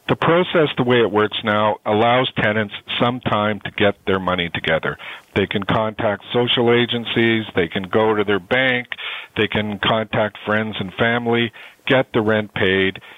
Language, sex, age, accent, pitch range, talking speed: English, male, 50-69, American, 100-120 Hz, 170 wpm